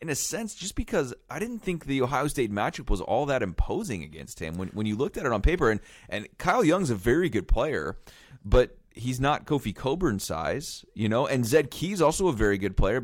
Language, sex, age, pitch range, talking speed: English, male, 30-49, 105-135 Hz, 230 wpm